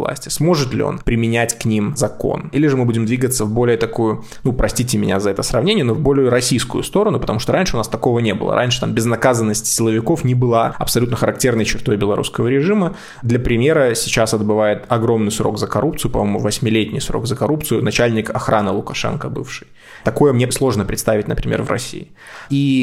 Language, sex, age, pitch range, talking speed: Russian, male, 20-39, 115-140 Hz, 185 wpm